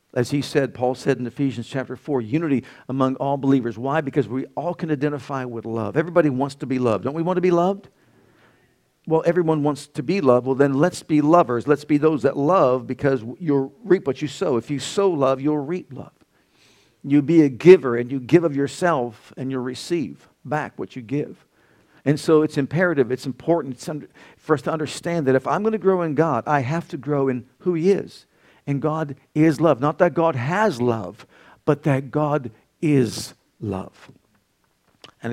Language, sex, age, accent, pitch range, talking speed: English, male, 50-69, American, 125-160 Hz, 200 wpm